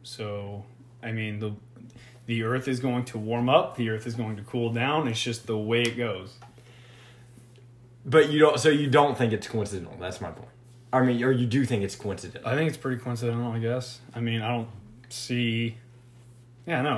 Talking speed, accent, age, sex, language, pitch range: 205 wpm, American, 30-49, male, English, 120-130 Hz